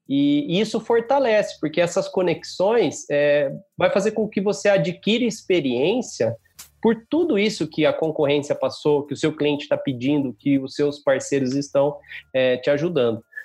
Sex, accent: male, Brazilian